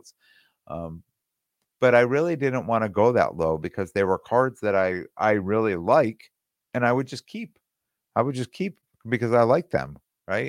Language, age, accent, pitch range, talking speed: English, 50-69, American, 95-120 Hz, 190 wpm